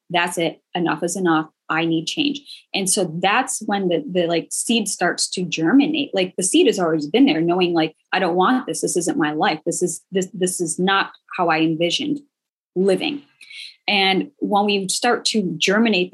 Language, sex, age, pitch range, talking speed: English, female, 20-39, 170-230 Hz, 195 wpm